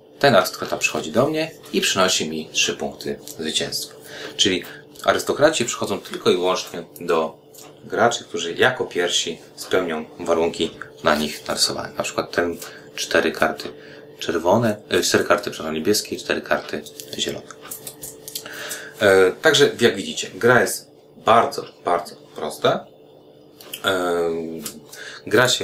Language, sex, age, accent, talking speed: Polish, male, 30-49, native, 120 wpm